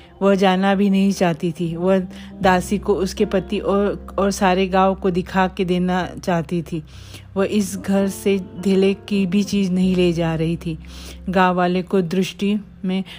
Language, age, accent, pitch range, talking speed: Hindi, 40-59, native, 180-195 Hz, 180 wpm